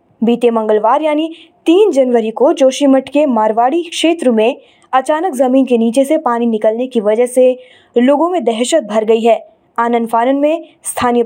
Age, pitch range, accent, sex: 20-39, 245-310 Hz, native, female